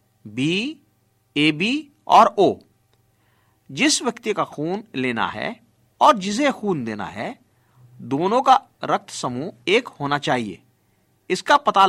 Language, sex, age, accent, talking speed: Hindi, male, 50-69, native, 120 wpm